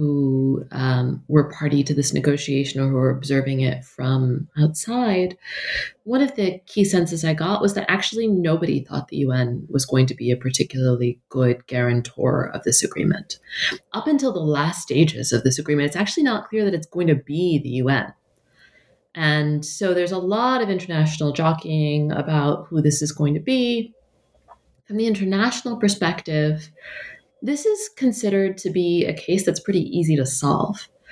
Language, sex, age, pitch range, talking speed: English, female, 30-49, 150-215 Hz, 170 wpm